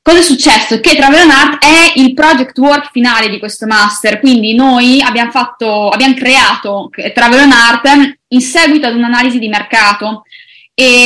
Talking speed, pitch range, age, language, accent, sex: 165 wpm, 220-275 Hz, 20-39, Italian, native, female